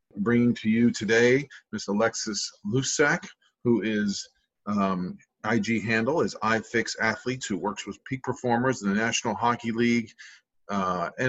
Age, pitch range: 40-59, 105-120 Hz